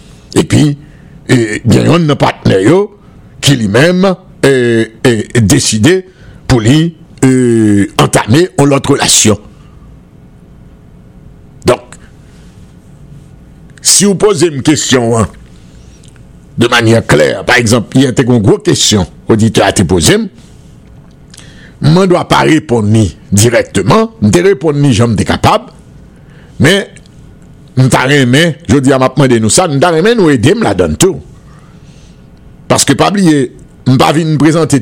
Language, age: English, 60-79